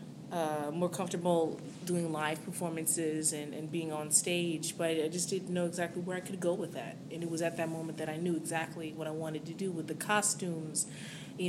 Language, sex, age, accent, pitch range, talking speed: English, female, 20-39, American, 155-180 Hz, 220 wpm